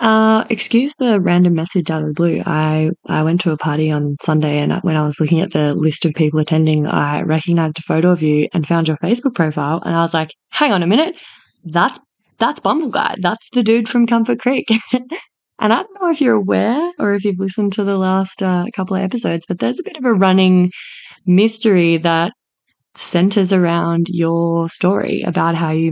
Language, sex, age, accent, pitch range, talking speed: English, female, 20-39, Australian, 160-205 Hz, 210 wpm